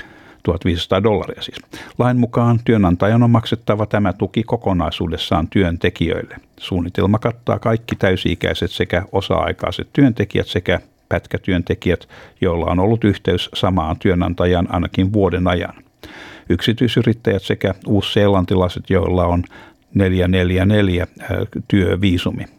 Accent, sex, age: native, male, 60-79